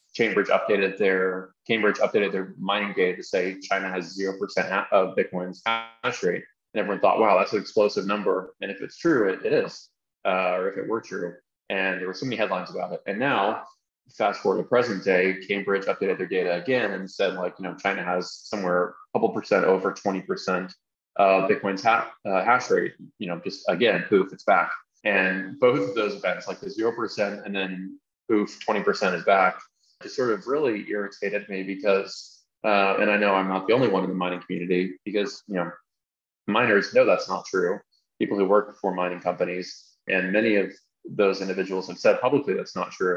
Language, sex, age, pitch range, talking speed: English, male, 20-39, 90-100 Hz, 200 wpm